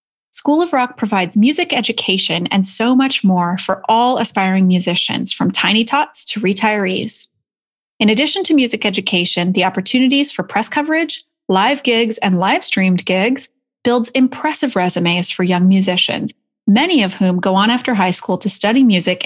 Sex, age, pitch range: female, 30-49, 185-255 Hz